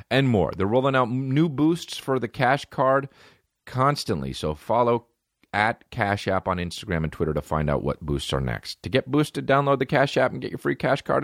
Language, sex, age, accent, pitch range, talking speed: English, male, 40-59, American, 80-125 Hz, 220 wpm